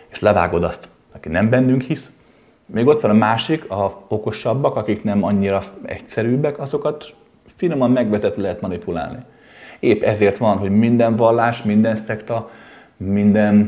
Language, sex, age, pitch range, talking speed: Hungarian, male, 30-49, 100-120 Hz, 135 wpm